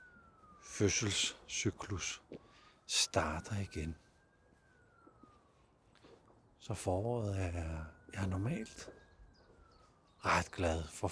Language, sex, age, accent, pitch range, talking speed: Danish, male, 60-79, native, 80-105 Hz, 60 wpm